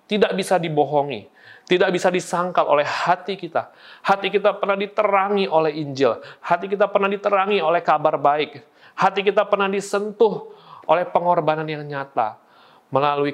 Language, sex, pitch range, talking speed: Indonesian, male, 125-185 Hz, 140 wpm